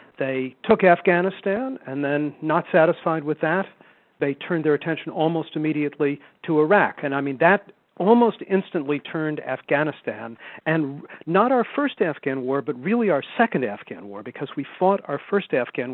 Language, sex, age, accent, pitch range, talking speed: English, male, 50-69, American, 145-190 Hz, 160 wpm